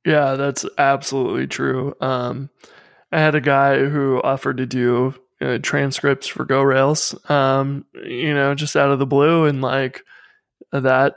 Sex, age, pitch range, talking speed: male, 20-39, 130-150 Hz, 150 wpm